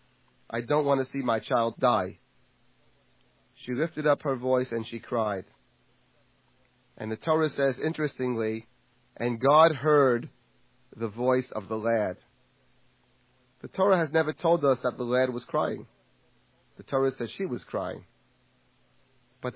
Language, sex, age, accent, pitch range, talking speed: English, male, 40-59, American, 125-155 Hz, 145 wpm